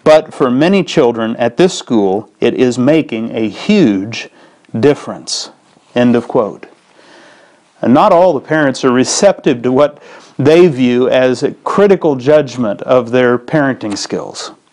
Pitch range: 125-165 Hz